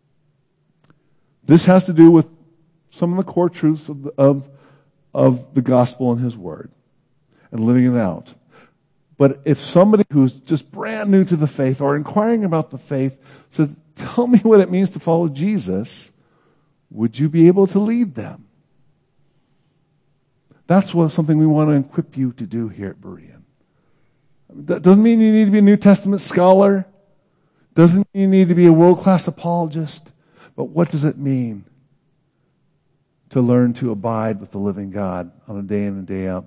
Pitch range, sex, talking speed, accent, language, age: 125-165 Hz, male, 175 wpm, American, English, 50-69